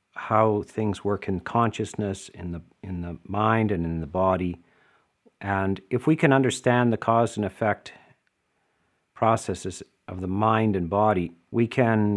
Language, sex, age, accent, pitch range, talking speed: English, male, 50-69, American, 95-115 Hz, 155 wpm